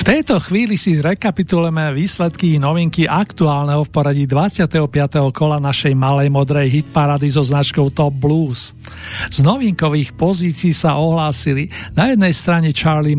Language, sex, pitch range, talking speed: Slovak, male, 140-165 Hz, 140 wpm